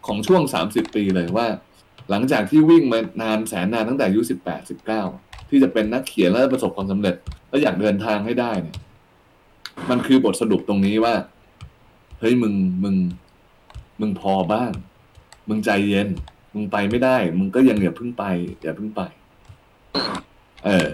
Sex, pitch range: male, 105-145 Hz